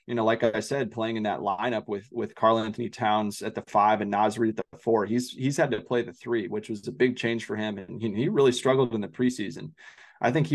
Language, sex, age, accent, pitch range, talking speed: English, male, 20-39, American, 105-125 Hz, 265 wpm